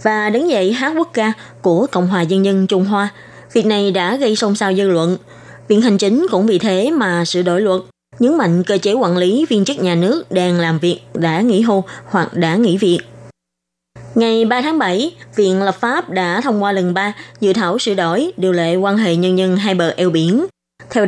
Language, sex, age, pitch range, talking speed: Vietnamese, female, 20-39, 175-220 Hz, 220 wpm